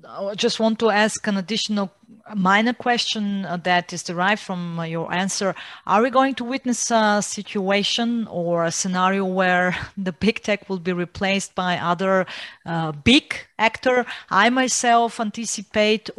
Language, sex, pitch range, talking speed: English, female, 180-215 Hz, 150 wpm